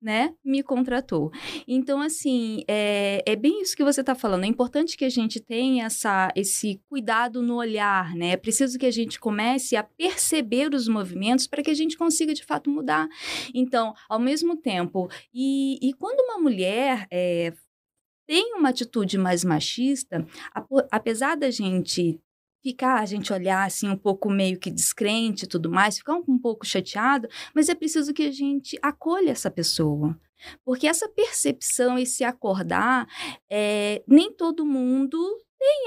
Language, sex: Portuguese, female